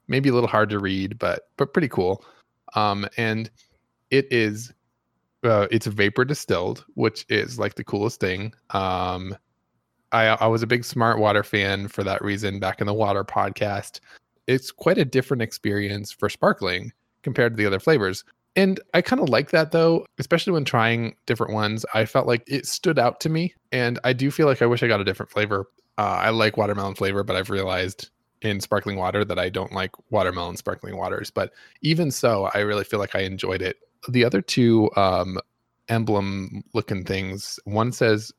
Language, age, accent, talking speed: English, 20-39, American, 190 wpm